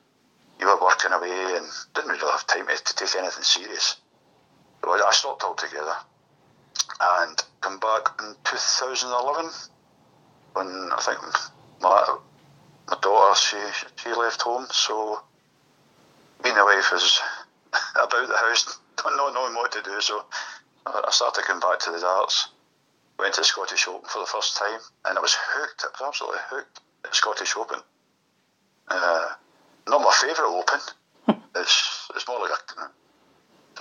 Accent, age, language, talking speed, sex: British, 60-79, English, 150 wpm, male